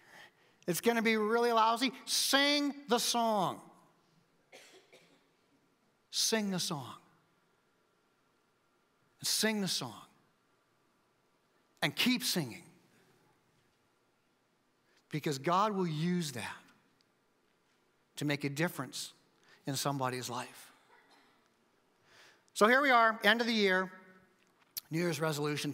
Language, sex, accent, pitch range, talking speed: English, male, American, 145-175 Hz, 95 wpm